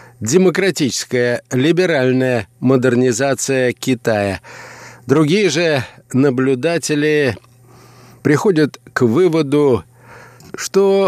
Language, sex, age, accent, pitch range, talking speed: Russian, male, 50-69, native, 125-165 Hz, 60 wpm